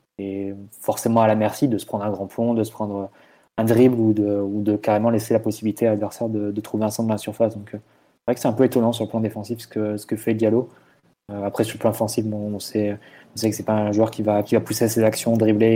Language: French